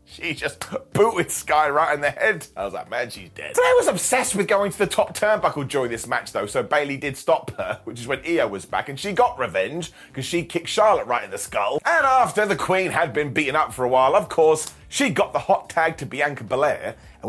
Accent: British